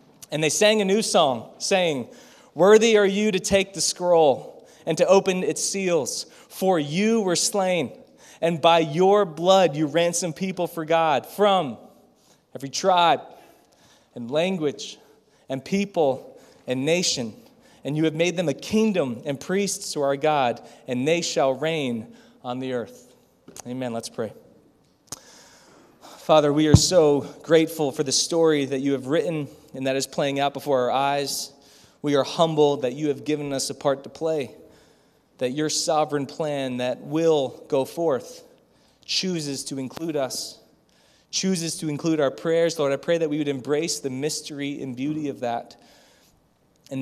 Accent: American